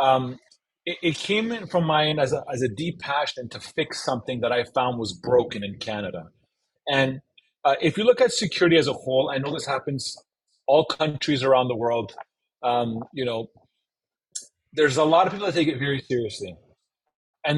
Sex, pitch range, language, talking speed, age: male, 130-165 Hz, English, 190 wpm, 30-49